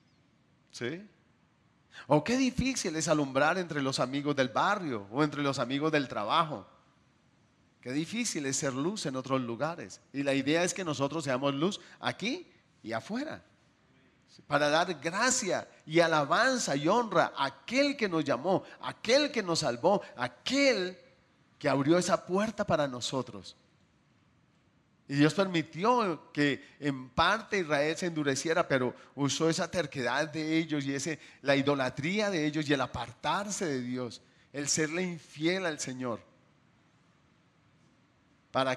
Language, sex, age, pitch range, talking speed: Spanish, male, 40-59, 135-175 Hz, 140 wpm